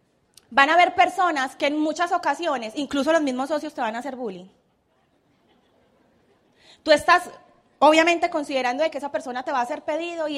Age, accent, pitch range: 30-49, Colombian, 260-335 Hz